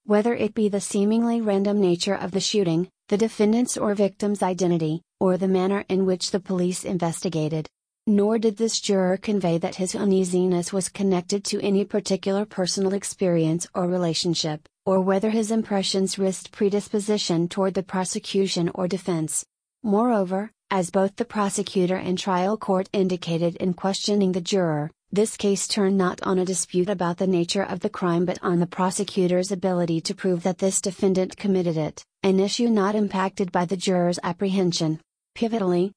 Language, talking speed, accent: English, 165 wpm, American